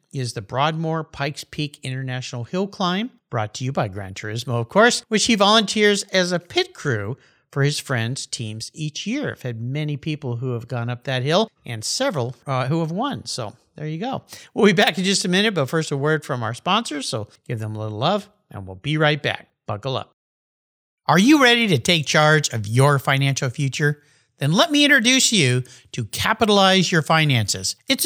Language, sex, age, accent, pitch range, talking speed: English, male, 50-69, American, 130-205 Hz, 205 wpm